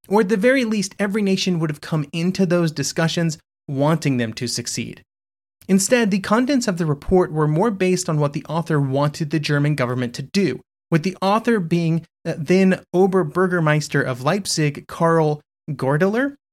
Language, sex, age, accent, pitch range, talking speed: English, male, 30-49, American, 145-190 Hz, 165 wpm